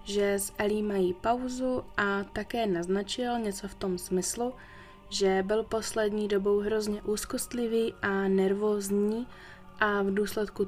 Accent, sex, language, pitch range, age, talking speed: native, female, Czech, 180-210 Hz, 20-39, 130 wpm